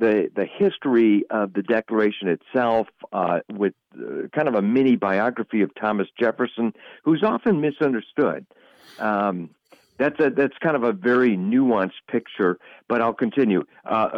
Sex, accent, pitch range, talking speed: male, American, 95-120 Hz, 140 wpm